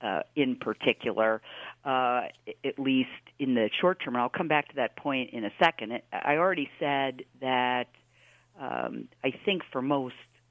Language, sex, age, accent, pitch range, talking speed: English, female, 50-69, American, 130-160 Hz, 165 wpm